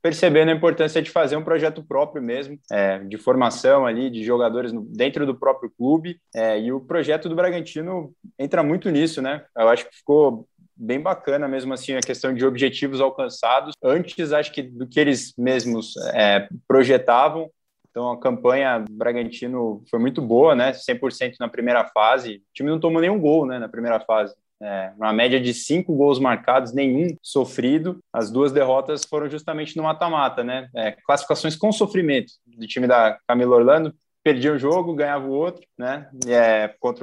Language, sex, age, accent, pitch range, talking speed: Portuguese, male, 20-39, Brazilian, 120-155 Hz, 170 wpm